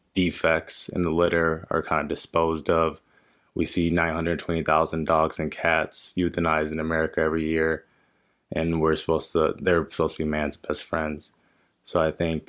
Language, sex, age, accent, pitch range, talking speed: English, male, 20-39, American, 80-85 Hz, 165 wpm